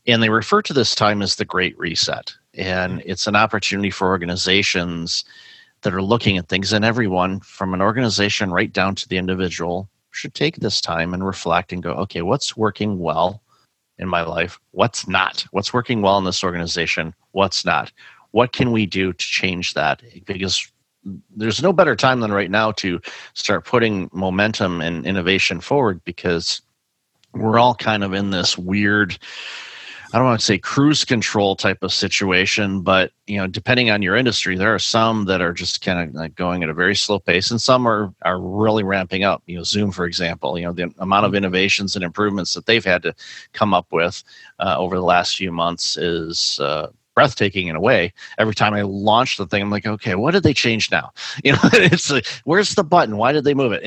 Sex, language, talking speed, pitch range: male, English, 205 wpm, 90-110 Hz